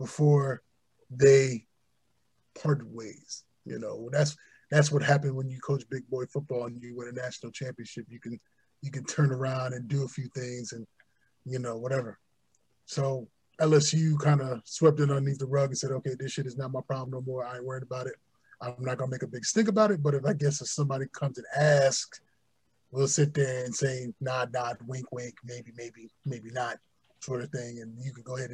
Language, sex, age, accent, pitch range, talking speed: English, male, 20-39, American, 125-145 Hz, 220 wpm